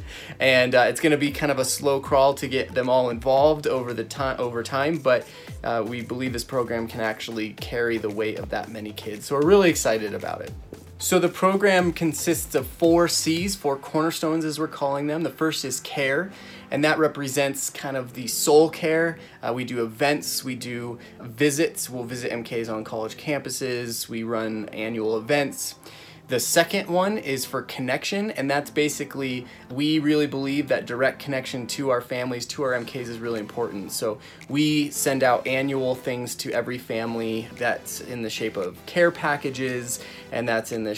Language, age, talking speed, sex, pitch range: English, 20-39, 185 wpm, male, 115-150 Hz